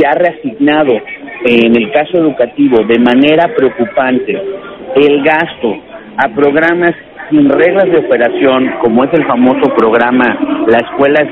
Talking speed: 145 wpm